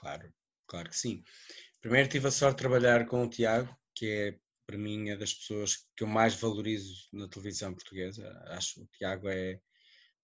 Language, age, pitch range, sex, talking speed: Portuguese, 20-39, 105-125 Hz, male, 175 wpm